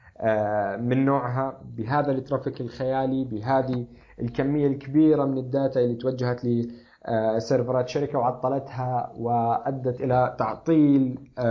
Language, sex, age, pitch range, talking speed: Arabic, male, 20-39, 120-145 Hz, 95 wpm